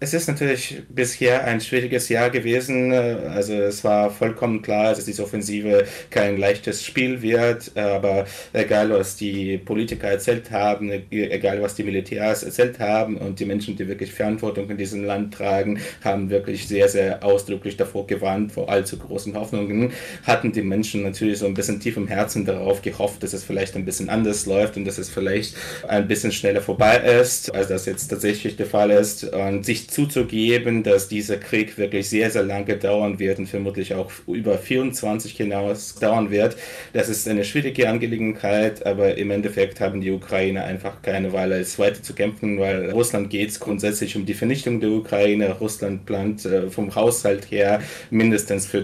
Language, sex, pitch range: German, male, 100-110 Hz